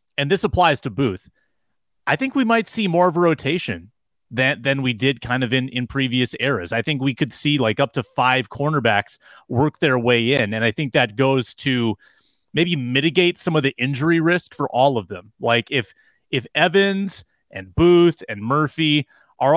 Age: 30-49